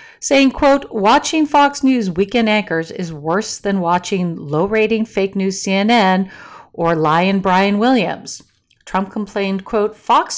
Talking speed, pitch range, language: 140 wpm, 170-235 Hz, English